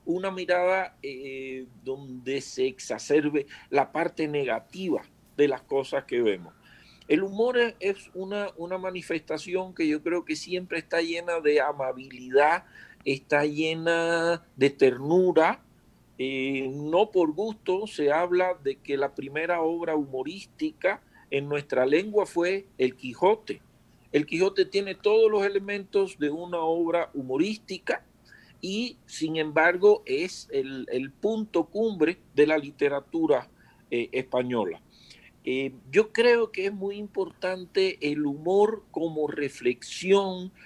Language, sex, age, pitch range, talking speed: Spanish, male, 50-69, 145-195 Hz, 125 wpm